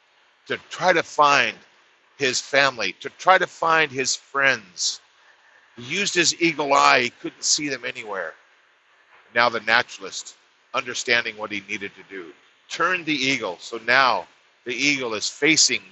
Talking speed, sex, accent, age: 150 wpm, male, American, 50-69